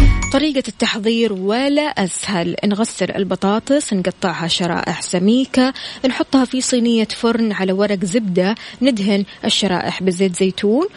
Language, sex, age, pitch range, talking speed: Arabic, female, 20-39, 190-235 Hz, 110 wpm